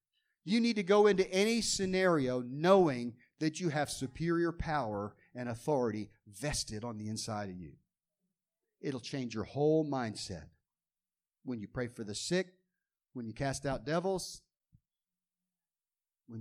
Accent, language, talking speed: American, English, 140 wpm